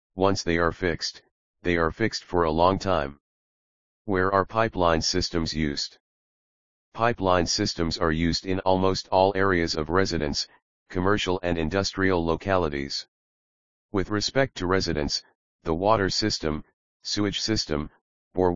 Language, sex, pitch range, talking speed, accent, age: English, male, 85-100 Hz, 130 wpm, American, 40-59